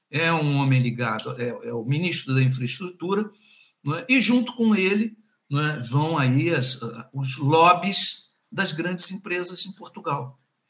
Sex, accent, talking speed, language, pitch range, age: male, Brazilian, 155 wpm, Portuguese, 130-175 Hz, 50-69